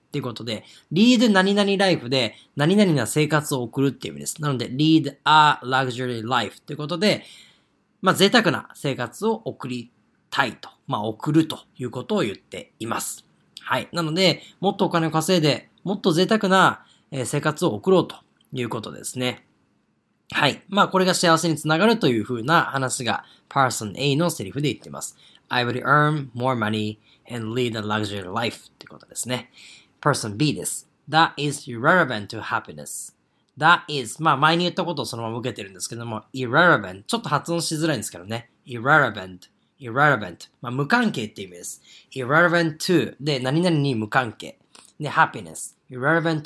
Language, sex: Japanese, male